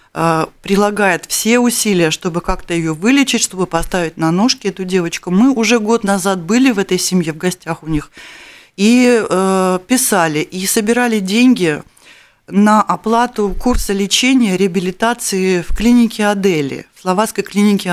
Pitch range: 175-215 Hz